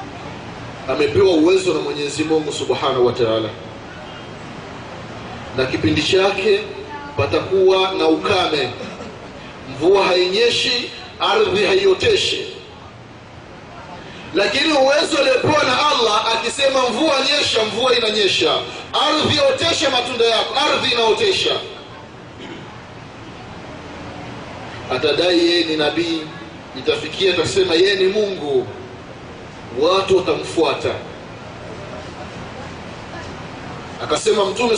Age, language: 30-49, Swahili